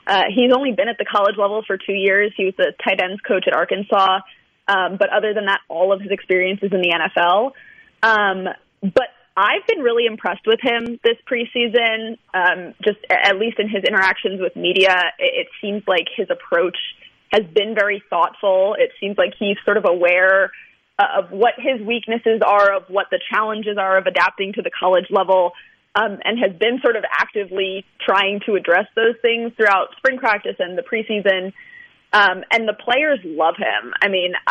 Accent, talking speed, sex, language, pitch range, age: American, 195 wpm, female, English, 190-225 Hz, 20-39